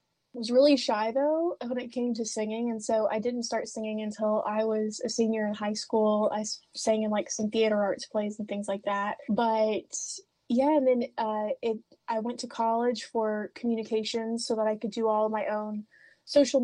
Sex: female